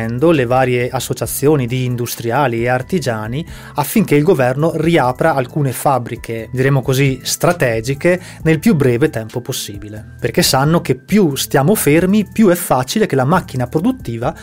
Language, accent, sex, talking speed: Italian, native, male, 140 wpm